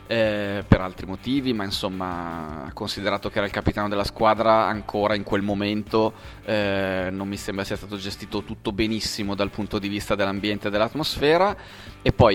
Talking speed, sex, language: 165 wpm, male, Italian